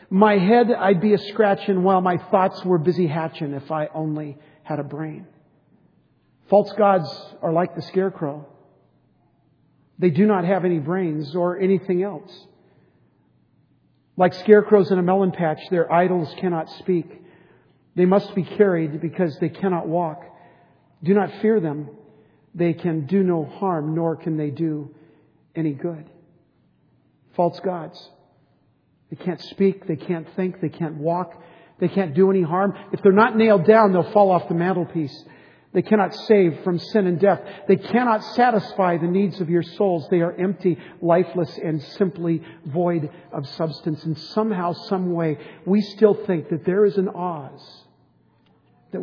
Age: 50-69